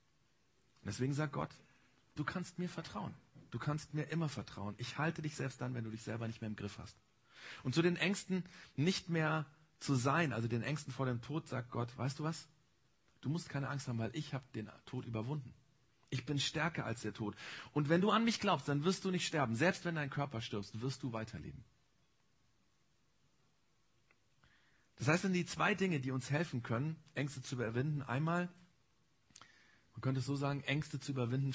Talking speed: 195 wpm